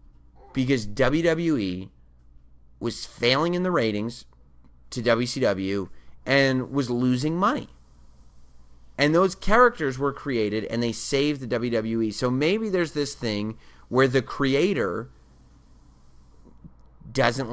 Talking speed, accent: 110 wpm, American